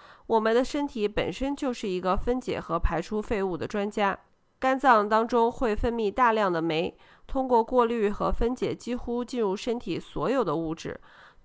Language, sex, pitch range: Chinese, female, 185-235 Hz